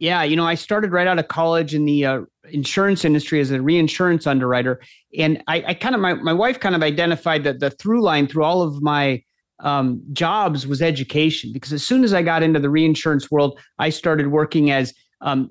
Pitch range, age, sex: 140-165 Hz, 30-49, male